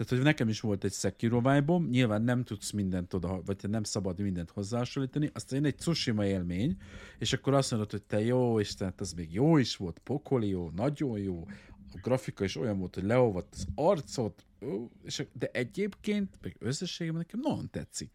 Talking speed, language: 180 wpm, Hungarian